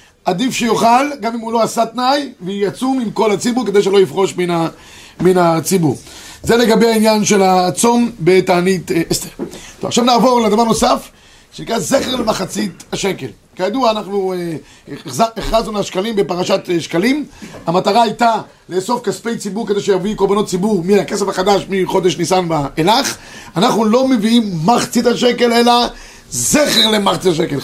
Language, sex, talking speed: Hebrew, male, 140 wpm